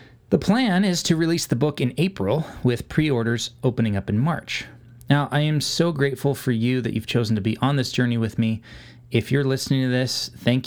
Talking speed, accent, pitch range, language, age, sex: 220 wpm, American, 115-145 Hz, English, 30-49, male